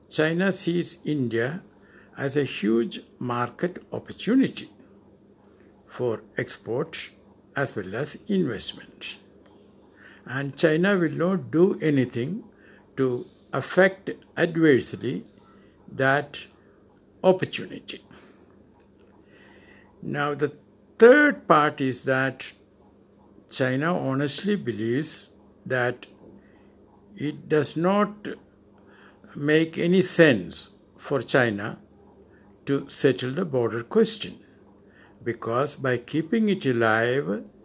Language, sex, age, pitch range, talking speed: English, male, 60-79, 120-170 Hz, 85 wpm